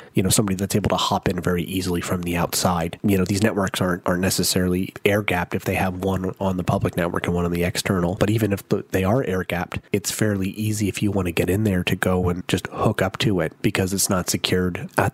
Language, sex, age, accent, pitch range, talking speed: English, male, 30-49, American, 90-105 Hz, 250 wpm